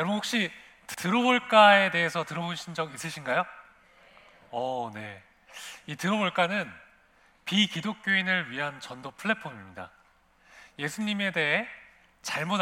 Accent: native